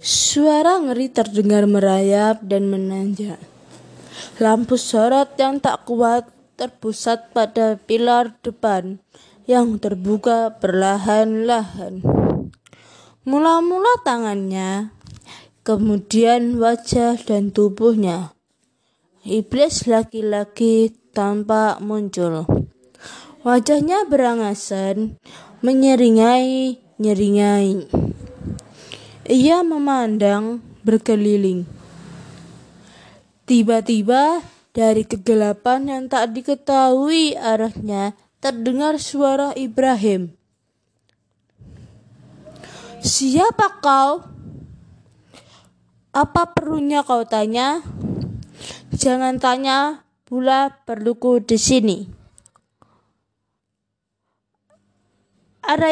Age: 20-39